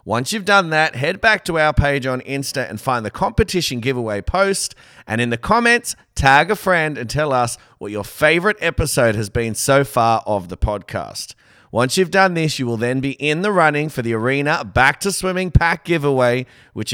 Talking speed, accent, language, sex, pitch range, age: 205 wpm, Australian, English, male, 110-155 Hz, 30-49